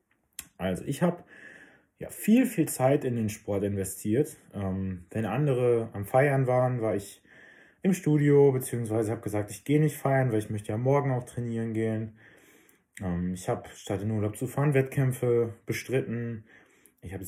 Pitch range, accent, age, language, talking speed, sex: 100-125 Hz, German, 20-39, German, 165 wpm, male